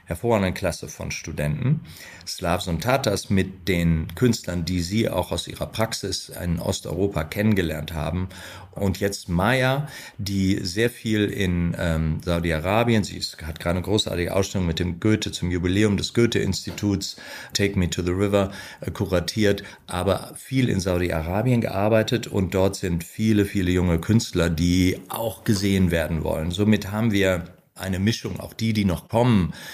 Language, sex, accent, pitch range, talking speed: German, male, German, 85-115 Hz, 150 wpm